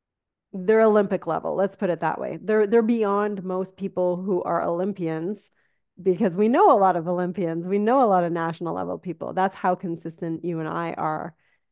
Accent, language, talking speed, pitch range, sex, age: American, English, 195 wpm, 165-195 Hz, female, 30-49